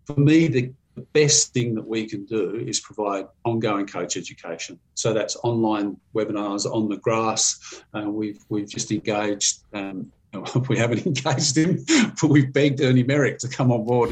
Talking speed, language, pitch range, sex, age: 170 wpm, English, 105-125 Hz, male, 50-69